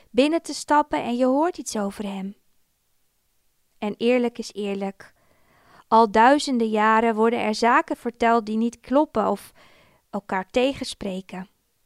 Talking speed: 130 wpm